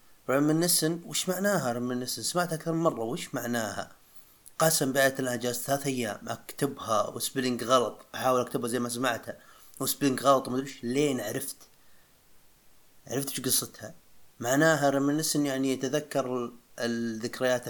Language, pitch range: Arabic, 110-140 Hz